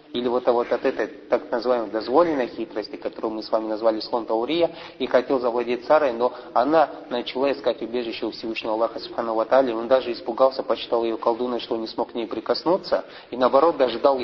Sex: male